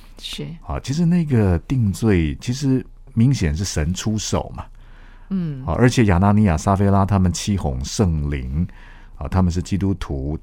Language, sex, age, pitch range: Chinese, male, 50-69, 80-110 Hz